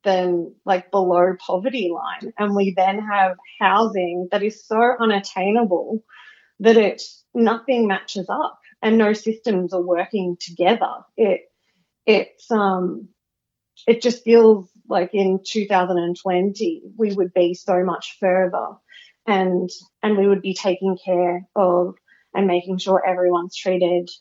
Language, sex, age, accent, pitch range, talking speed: English, female, 30-49, Australian, 185-215 Hz, 130 wpm